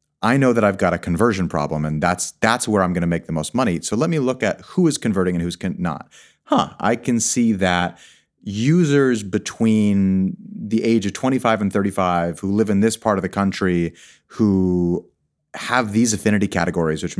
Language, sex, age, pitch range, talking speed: English, male, 30-49, 85-115 Hz, 200 wpm